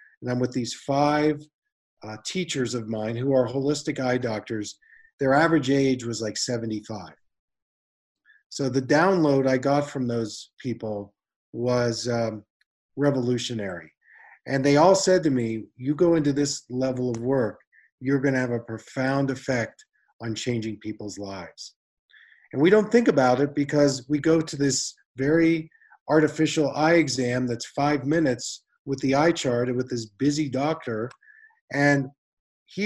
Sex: male